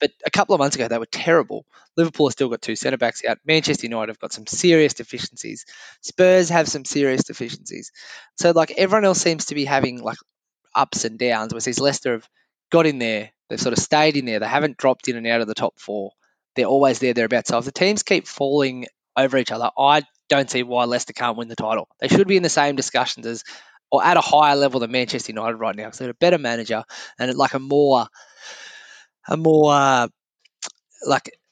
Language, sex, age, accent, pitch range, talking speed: English, male, 20-39, Australian, 120-150 Hz, 225 wpm